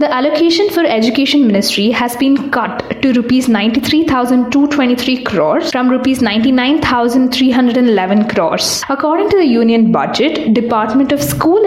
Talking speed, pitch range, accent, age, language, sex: 125 wpm, 225-285 Hz, native, 20-39, Kannada, female